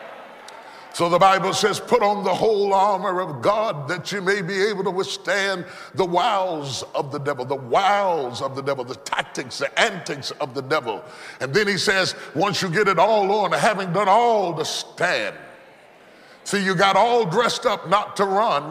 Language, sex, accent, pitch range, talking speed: English, female, American, 175-215 Hz, 190 wpm